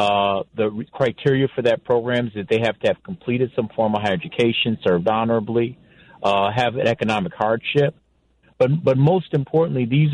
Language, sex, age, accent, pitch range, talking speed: English, male, 40-59, American, 110-130 Hz, 180 wpm